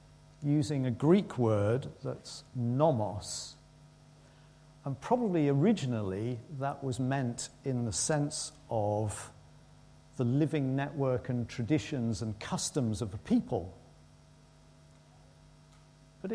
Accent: British